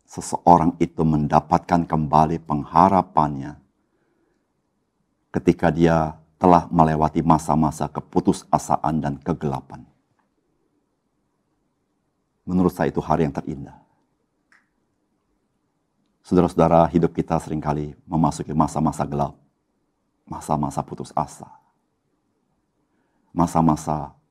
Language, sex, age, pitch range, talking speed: Indonesian, male, 50-69, 75-85 Hz, 75 wpm